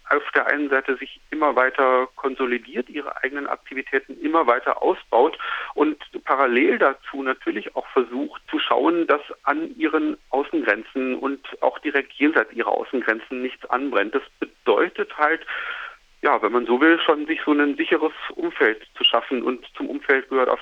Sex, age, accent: male, 40-59, German